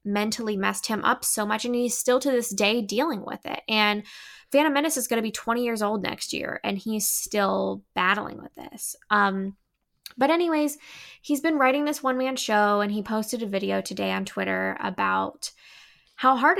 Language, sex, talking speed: English, female, 190 wpm